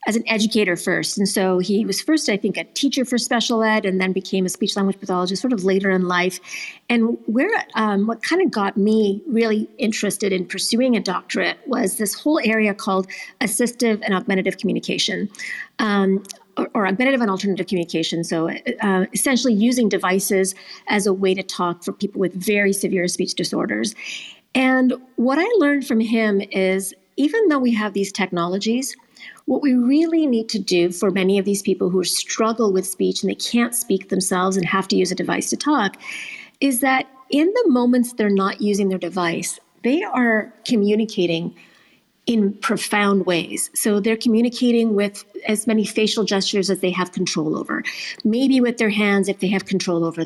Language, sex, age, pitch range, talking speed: English, female, 40-59, 190-235 Hz, 185 wpm